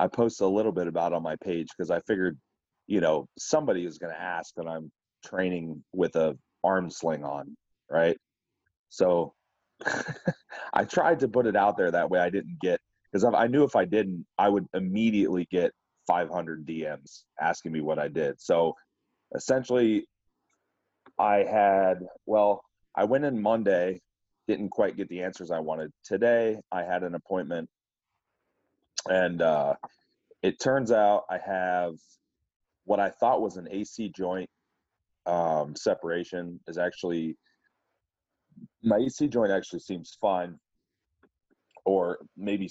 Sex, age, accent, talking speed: male, 30-49, American, 150 wpm